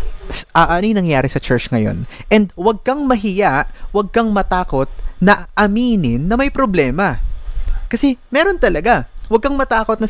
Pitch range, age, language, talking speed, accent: 115-165 Hz, 20-39, Filipino, 155 wpm, native